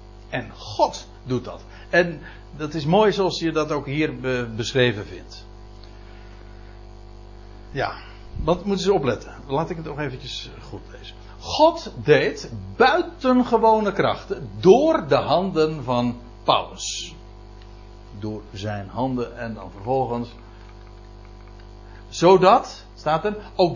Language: Dutch